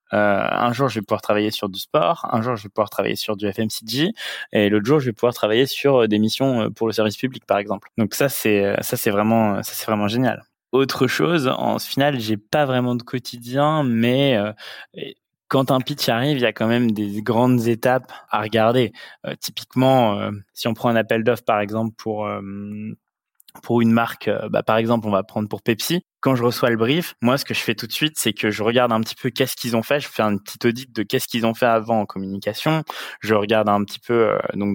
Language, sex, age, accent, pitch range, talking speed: French, male, 20-39, French, 110-130 Hz, 235 wpm